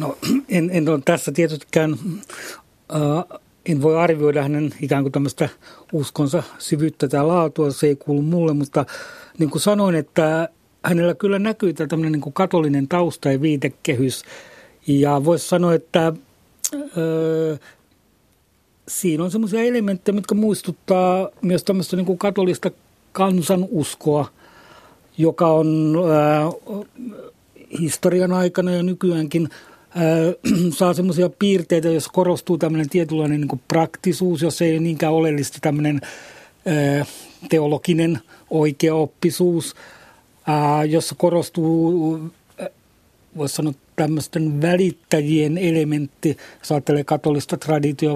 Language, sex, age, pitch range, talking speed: Finnish, male, 60-79, 150-175 Hz, 95 wpm